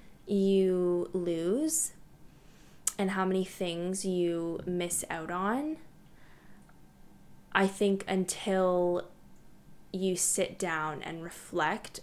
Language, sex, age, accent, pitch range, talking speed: English, female, 10-29, American, 170-195 Hz, 90 wpm